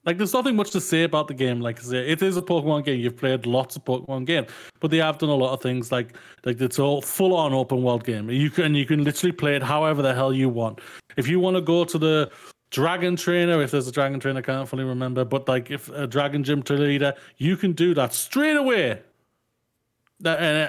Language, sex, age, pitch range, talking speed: English, male, 30-49, 130-170 Hz, 230 wpm